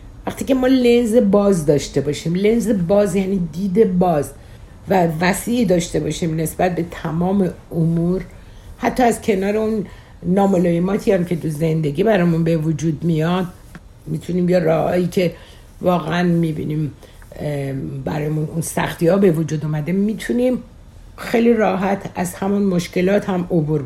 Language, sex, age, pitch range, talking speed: Persian, female, 60-79, 150-185 Hz, 135 wpm